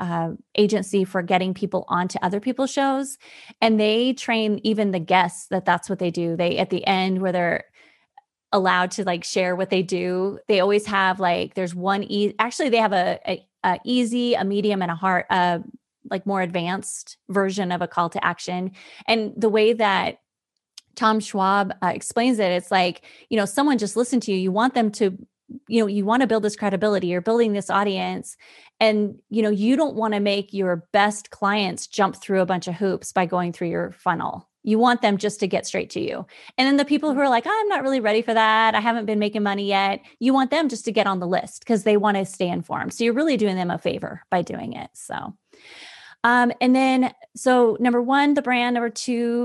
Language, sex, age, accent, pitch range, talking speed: English, female, 20-39, American, 185-235 Hz, 220 wpm